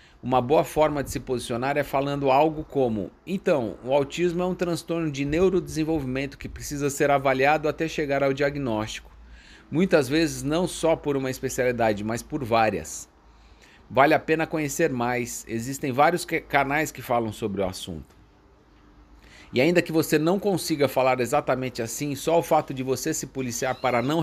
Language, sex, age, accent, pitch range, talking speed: Portuguese, male, 40-59, Brazilian, 125-160 Hz, 165 wpm